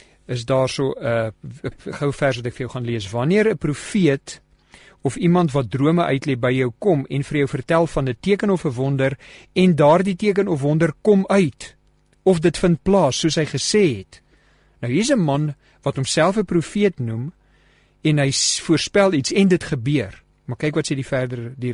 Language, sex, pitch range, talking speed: English, male, 125-160 Hz, 195 wpm